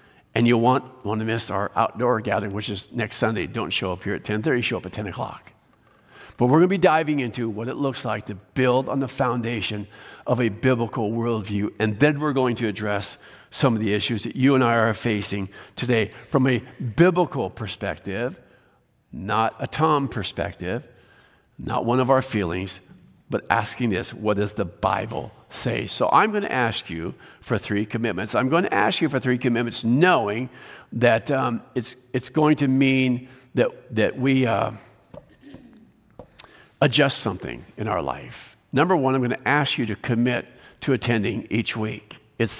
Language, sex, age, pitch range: English, male, 50-69, 110-130 Hz